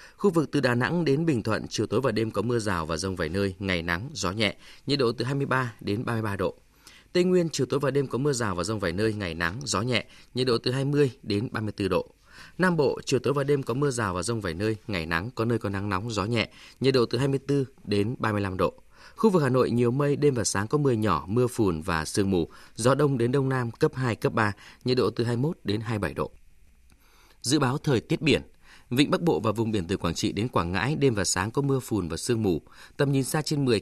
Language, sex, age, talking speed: Vietnamese, male, 20-39, 260 wpm